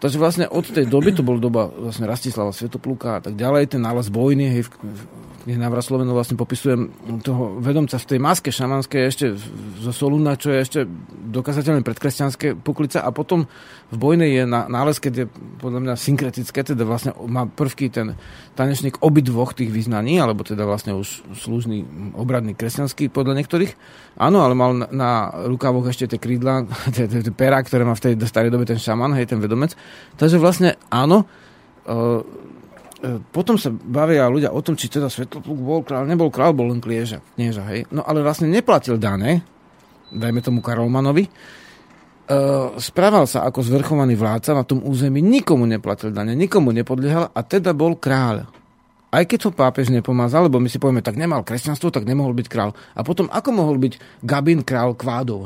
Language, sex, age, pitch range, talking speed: Slovak, male, 40-59, 120-145 Hz, 170 wpm